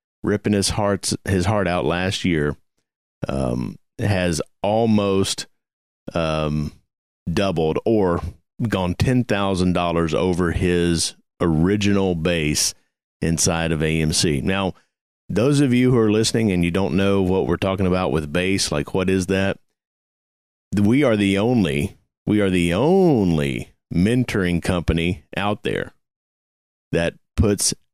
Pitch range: 85-115 Hz